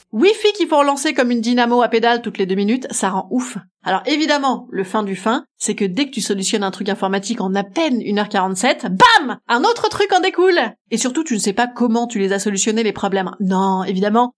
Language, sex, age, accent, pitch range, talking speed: French, female, 30-49, French, 200-280 Hz, 235 wpm